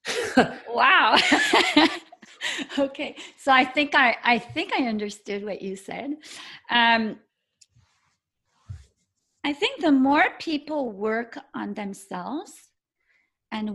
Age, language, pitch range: 40-59, English, 205-280 Hz